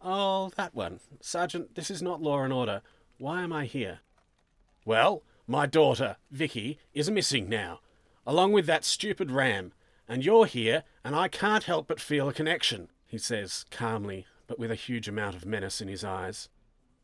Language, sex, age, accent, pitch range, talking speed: English, male, 40-59, Australian, 115-165 Hz, 175 wpm